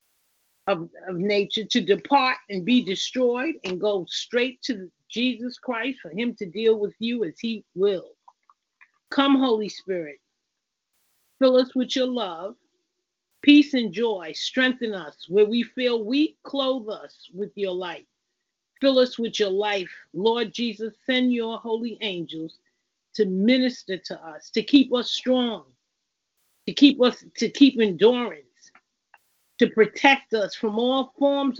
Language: English